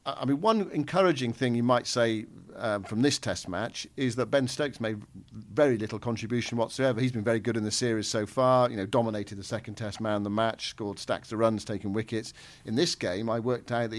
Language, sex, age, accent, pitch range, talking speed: English, male, 50-69, British, 105-130 Hz, 225 wpm